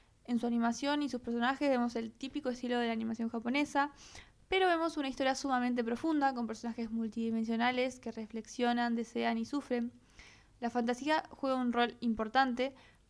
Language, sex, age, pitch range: Spanish, female, 20-39, 230-260 Hz